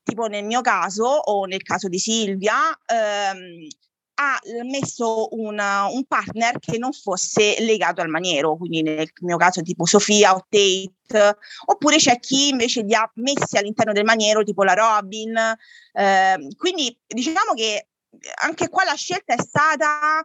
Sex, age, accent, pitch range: female, 30-49, native, 205-270 Hz